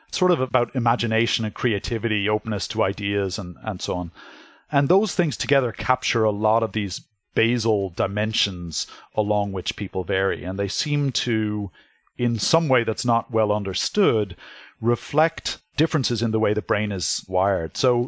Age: 30-49